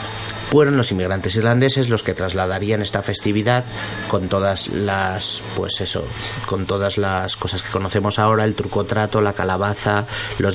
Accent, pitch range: Spanish, 100-115 Hz